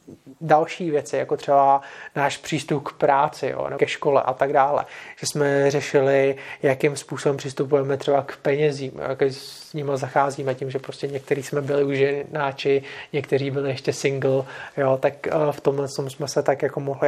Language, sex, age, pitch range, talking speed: Czech, male, 30-49, 140-150 Hz, 170 wpm